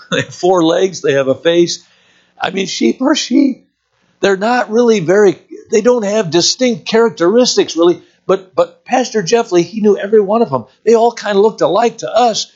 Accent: American